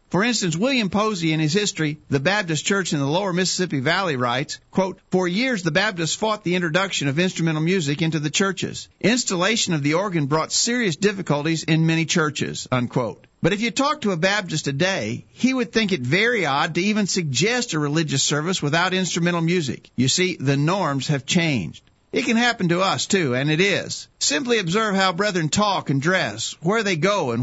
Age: 50-69